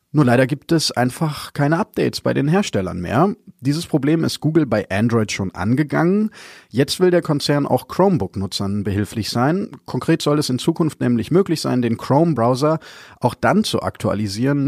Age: 30-49